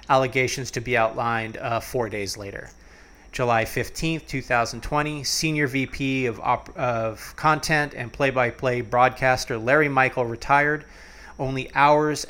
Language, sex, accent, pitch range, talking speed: English, male, American, 115-140 Hz, 125 wpm